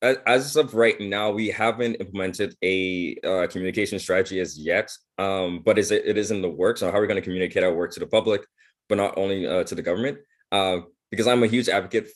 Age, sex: 20-39, male